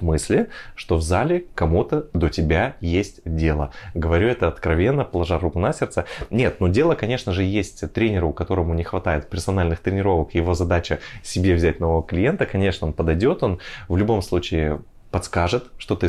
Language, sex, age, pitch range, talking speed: Russian, male, 20-39, 85-105 Hz, 165 wpm